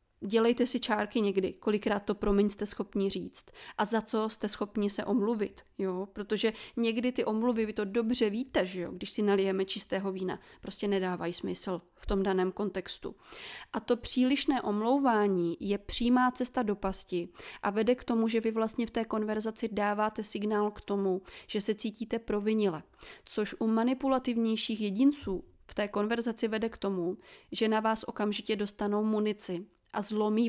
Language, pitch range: Czech, 200-235 Hz